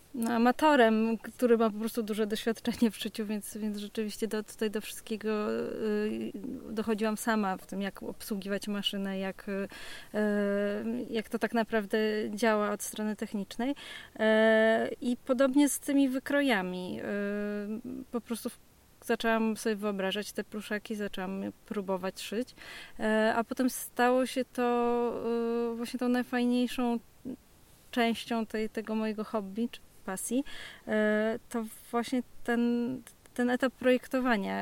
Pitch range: 215-245 Hz